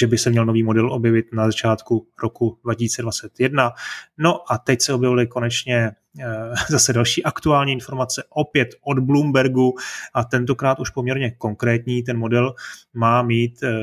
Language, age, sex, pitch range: Czech, 30-49, male, 115-130 Hz